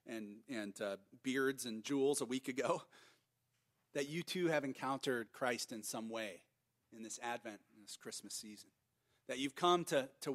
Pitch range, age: 125-145 Hz, 40-59